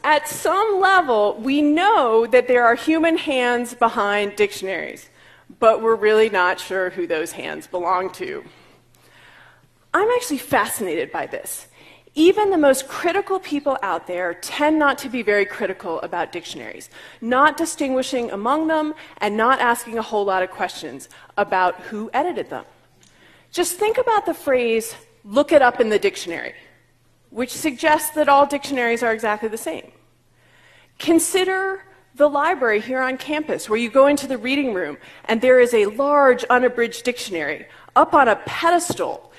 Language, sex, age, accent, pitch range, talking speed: English, female, 30-49, American, 220-305 Hz, 155 wpm